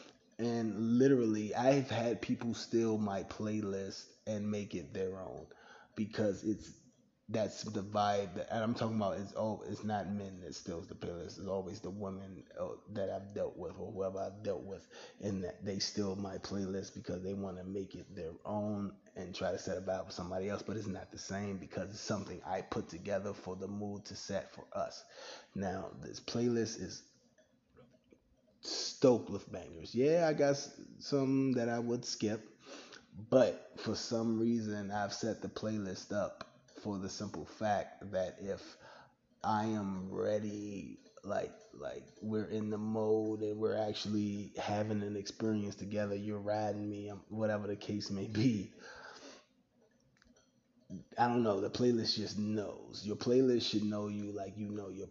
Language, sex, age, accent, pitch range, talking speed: English, male, 20-39, American, 95-110 Hz, 170 wpm